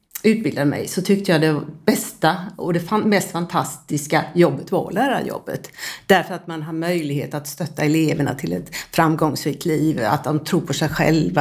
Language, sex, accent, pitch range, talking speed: Swedish, female, native, 155-190 Hz, 170 wpm